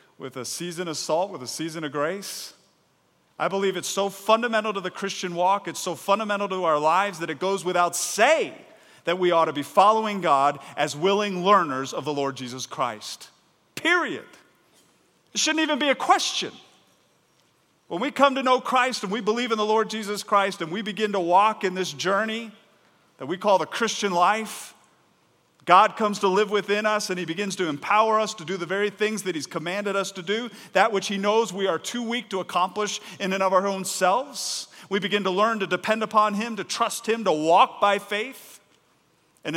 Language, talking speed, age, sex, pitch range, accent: English, 205 wpm, 40-59, male, 170-215 Hz, American